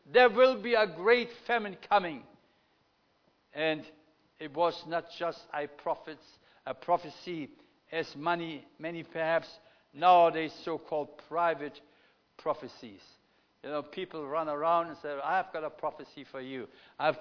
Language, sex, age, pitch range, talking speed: English, male, 60-79, 160-220 Hz, 135 wpm